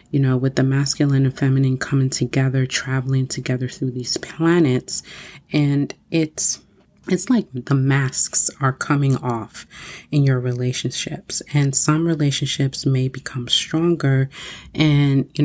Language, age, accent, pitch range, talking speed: English, 30-49, American, 130-155 Hz, 130 wpm